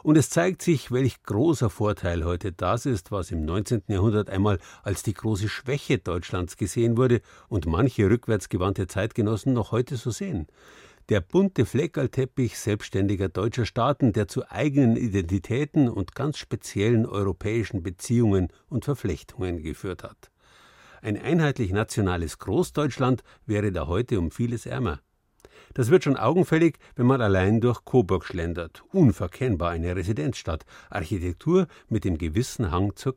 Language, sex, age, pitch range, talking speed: German, male, 50-69, 95-130 Hz, 140 wpm